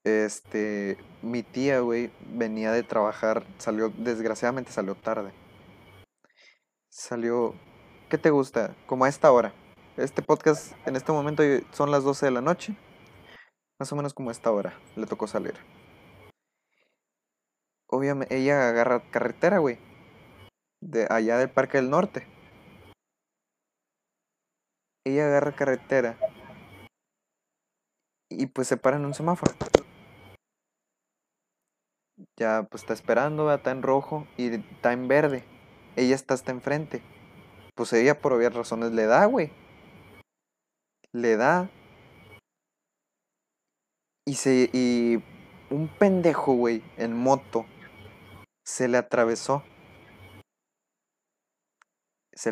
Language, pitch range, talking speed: Spanish, 115-140 Hz, 110 wpm